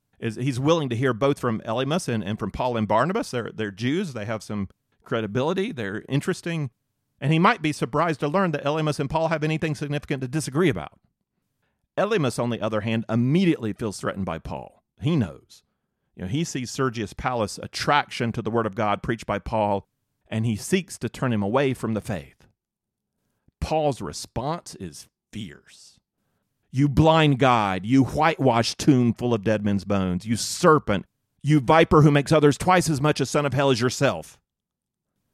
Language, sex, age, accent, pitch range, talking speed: English, male, 40-59, American, 105-145 Hz, 185 wpm